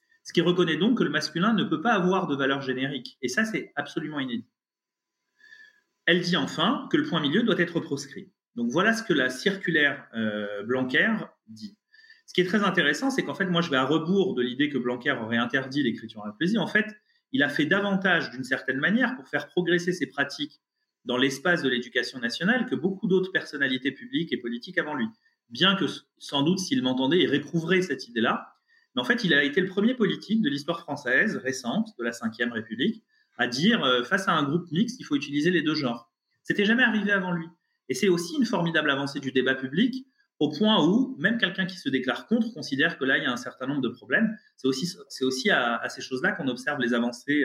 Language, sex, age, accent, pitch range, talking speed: French, male, 30-49, French, 135-225 Hz, 225 wpm